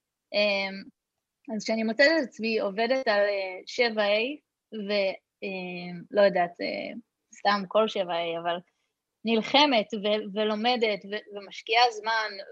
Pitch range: 205-270 Hz